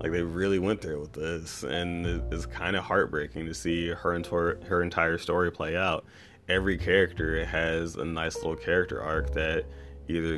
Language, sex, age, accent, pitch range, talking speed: English, male, 20-39, American, 80-95 Hz, 185 wpm